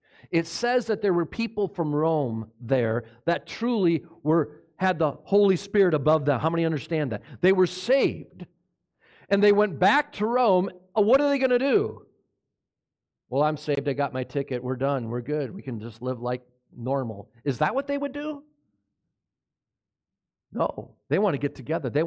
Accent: American